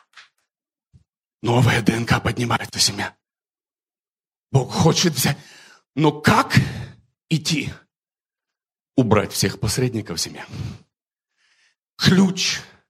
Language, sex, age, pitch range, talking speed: English, male, 40-59, 125-185 Hz, 75 wpm